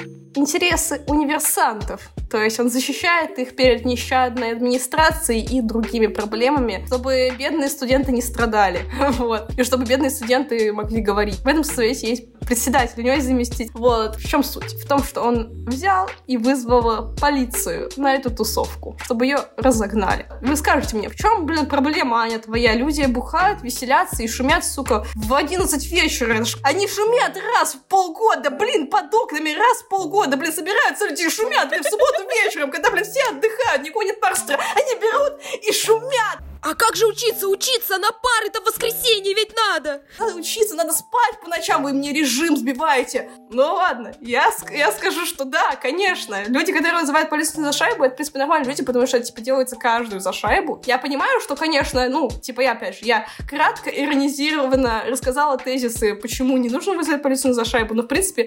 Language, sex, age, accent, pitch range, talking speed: Russian, female, 20-39, native, 250-355 Hz, 175 wpm